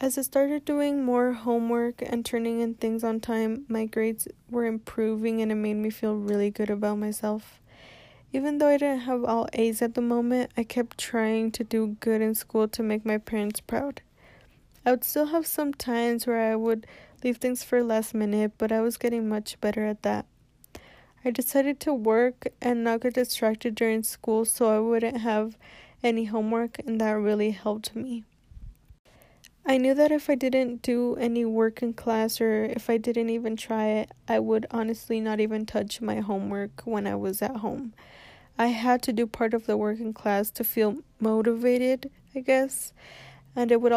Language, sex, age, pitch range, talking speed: English, female, 10-29, 220-245 Hz, 190 wpm